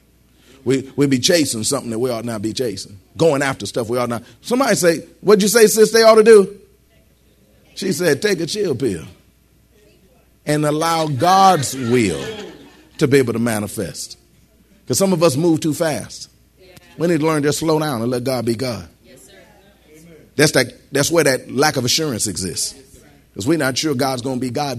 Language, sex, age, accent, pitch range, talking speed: English, male, 40-59, American, 120-165 Hz, 190 wpm